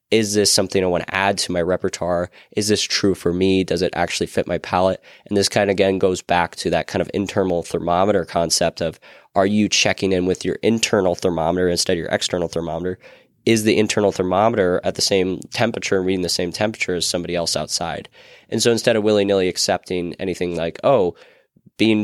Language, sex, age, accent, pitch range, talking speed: English, male, 20-39, American, 90-105 Hz, 210 wpm